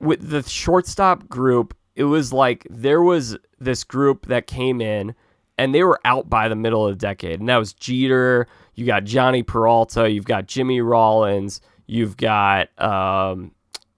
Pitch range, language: 110-135 Hz, English